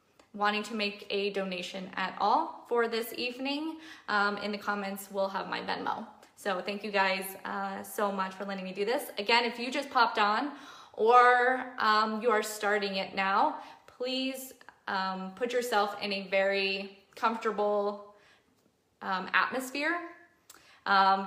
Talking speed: 155 wpm